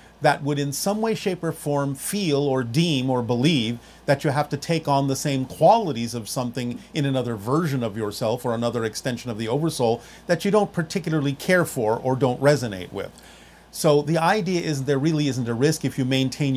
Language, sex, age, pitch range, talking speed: German, male, 40-59, 120-155 Hz, 205 wpm